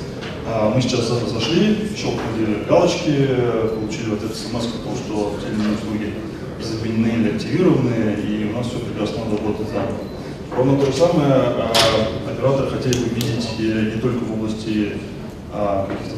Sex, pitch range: male, 105-120 Hz